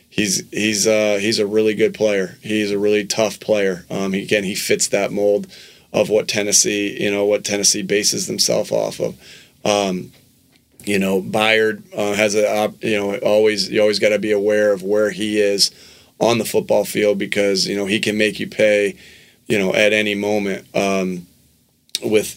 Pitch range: 100-110 Hz